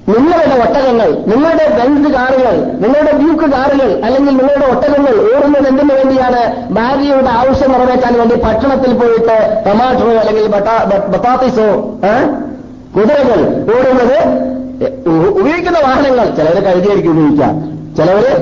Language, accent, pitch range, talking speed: Malayalam, native, 210-270 Hz, 105 wpm